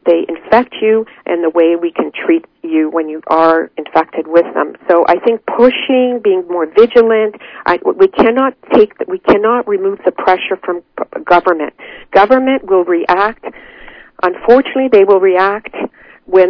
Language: English